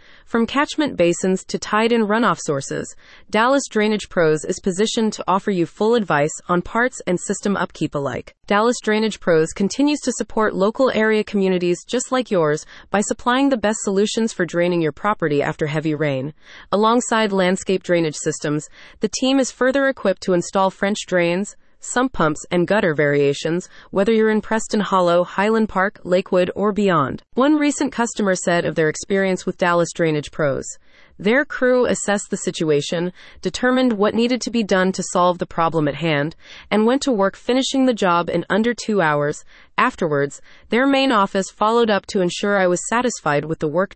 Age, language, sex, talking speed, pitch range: 30-49, English, female, 175 wpm, 170-225 Hz